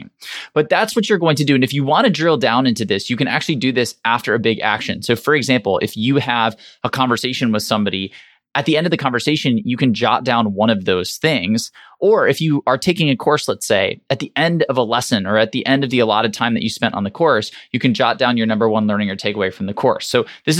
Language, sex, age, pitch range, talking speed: English, male, 20-39, 110-140 Hz, 270 wpm